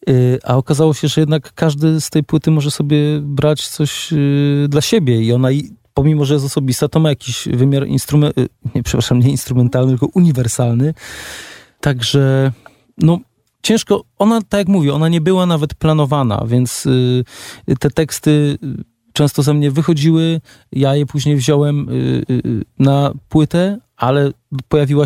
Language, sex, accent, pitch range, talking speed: Polish, male, native, 125-150 Hz, 140 wpm